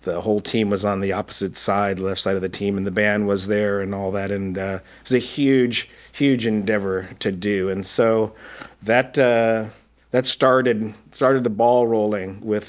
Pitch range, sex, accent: 100-115 Hz, male, American